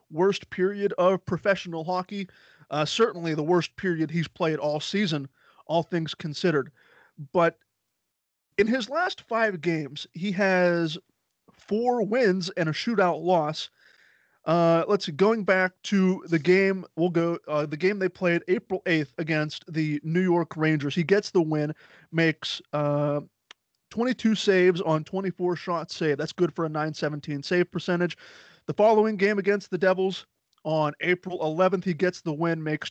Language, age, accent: English, 30-49, American